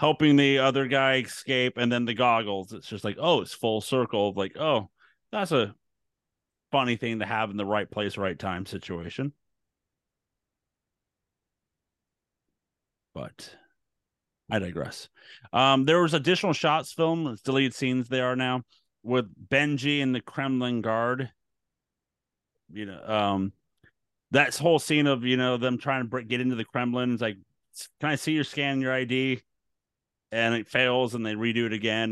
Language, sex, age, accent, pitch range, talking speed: English, male, 30-49, American, 110-135 Hz, 160 wpm